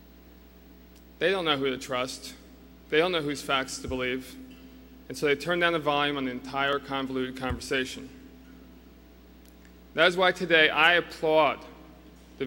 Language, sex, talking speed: English, male, 155 wpm